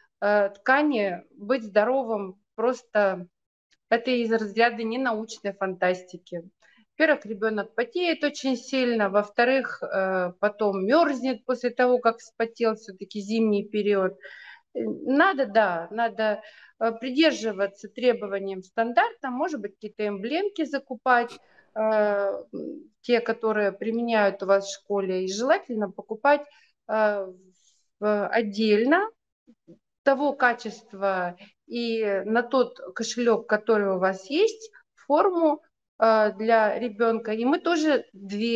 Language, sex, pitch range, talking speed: Russian, female, 200-250 Hz, 100 wpm